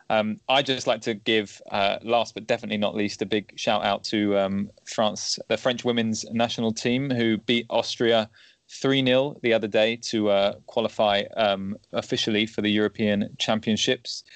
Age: 20-39